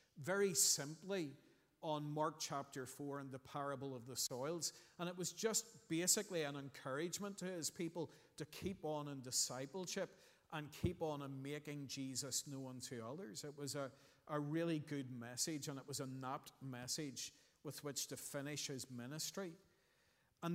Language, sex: English, male